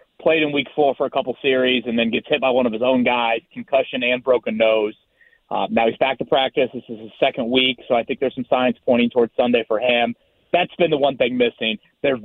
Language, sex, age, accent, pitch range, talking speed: English, male, 30-49, American, 115-140 Hz, 250 wpm